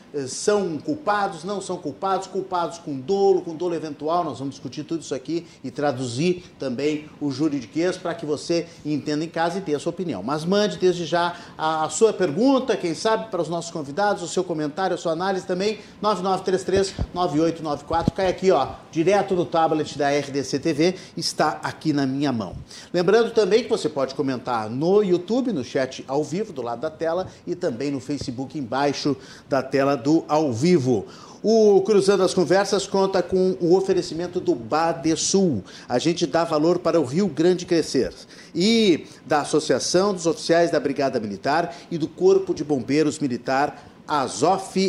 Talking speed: 170 wpm